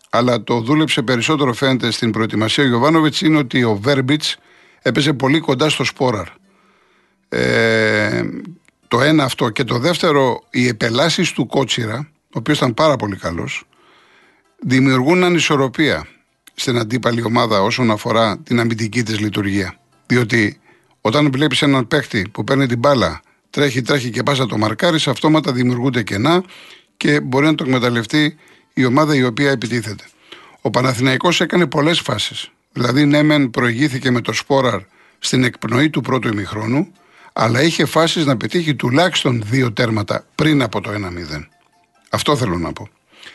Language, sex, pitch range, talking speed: Greek, male, 120-150 Hz, 145 wpm